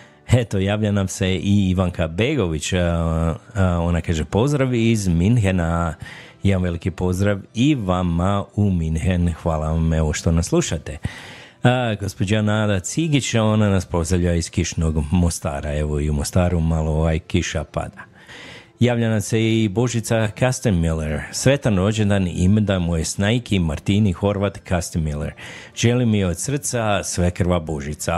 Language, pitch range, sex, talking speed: Croatian, 80-105 Hz, male, 135 wpm